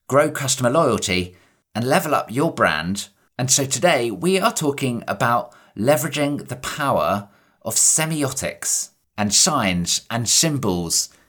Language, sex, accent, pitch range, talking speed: English, male, British, 115-155 Hz, 130 wpm